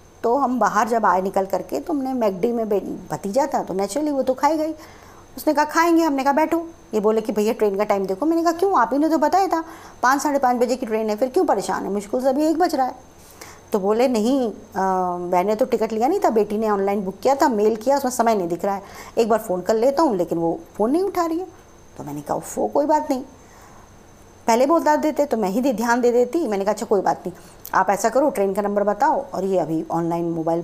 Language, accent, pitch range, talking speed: Hindi, native, 200-280 Hz, 255 wpm